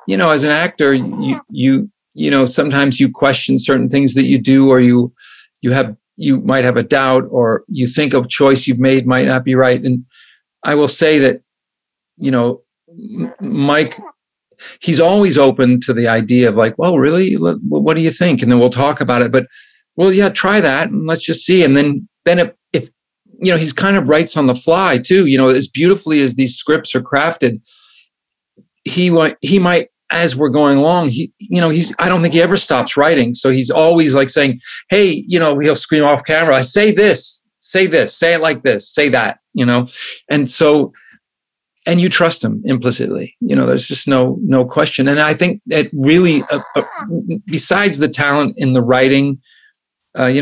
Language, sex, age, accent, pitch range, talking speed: English, male, 50-69, American, 130-170 Hz, 200 wpm